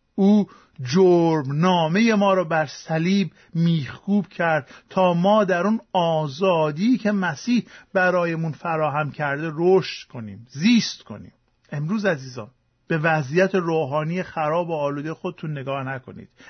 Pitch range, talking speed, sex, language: 155-210 Hz, 125 wpm, male, Persian